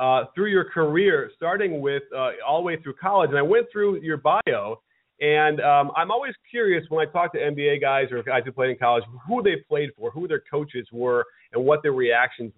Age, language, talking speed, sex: 30-49, English, 225 wpm, male